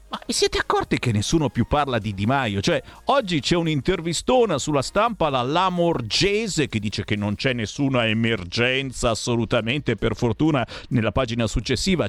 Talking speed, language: 160 wpm, Italian